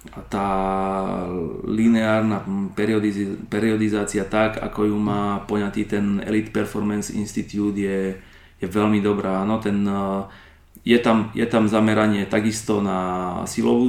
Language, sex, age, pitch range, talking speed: Slovak, male, 30-49, 100-105 Hz, 120 wpm